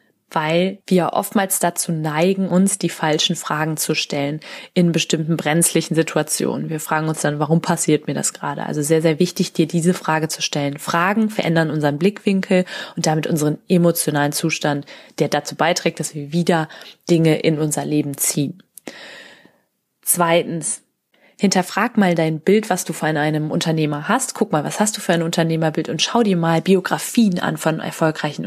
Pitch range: 155-185 Hz